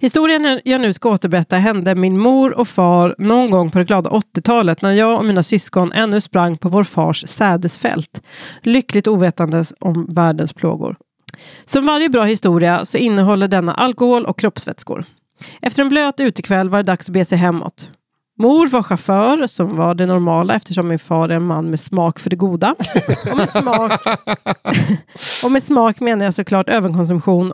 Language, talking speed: English, 175 wpm